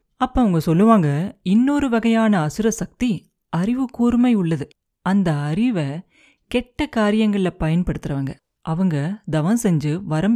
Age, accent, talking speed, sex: 30-49, native, 110 wpm, female